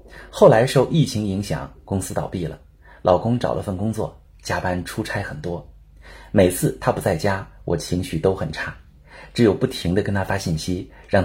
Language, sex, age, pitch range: Chinese, male, 30-49, 85-120 Hz